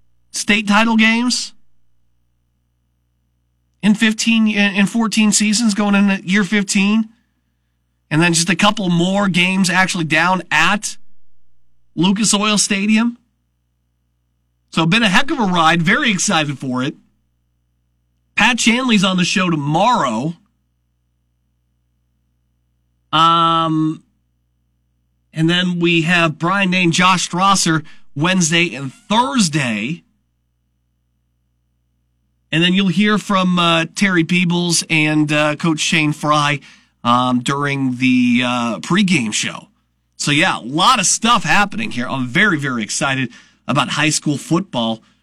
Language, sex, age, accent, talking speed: English, male, 40-59, American, 120 wpm